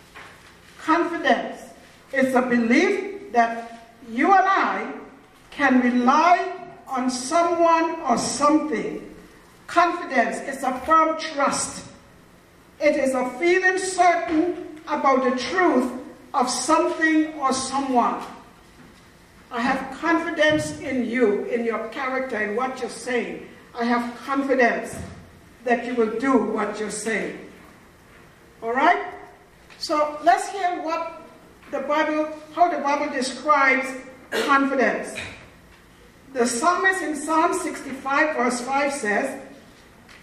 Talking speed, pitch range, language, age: 110 wpm, 245-330 Hz, English, 60-79